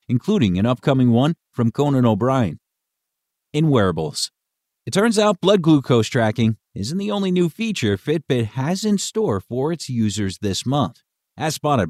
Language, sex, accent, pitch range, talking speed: English, male, American, 105-155 Hz, 155 wpm